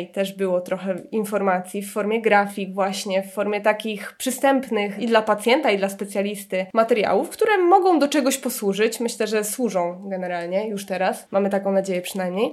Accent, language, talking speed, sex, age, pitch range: native, Polish, 165 wpm, female, 20-39, 210-275 Hz